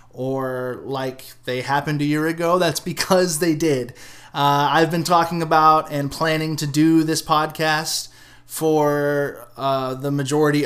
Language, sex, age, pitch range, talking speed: English, male, 20-39, 135-160 Hz, 145 wpm